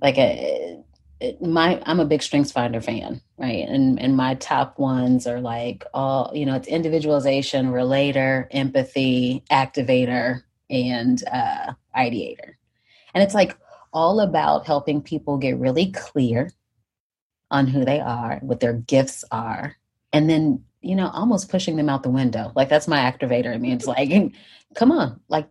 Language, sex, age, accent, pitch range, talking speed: English, female, 30-49, American, 125-150 Hz, 160 wpm